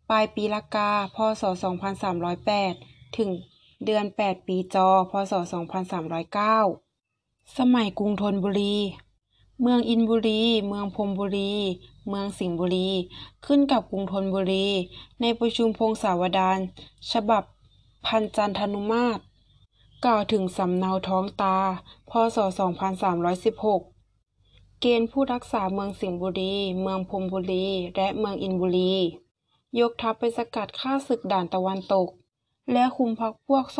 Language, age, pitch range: Thai, 20-39, 190-225 Hz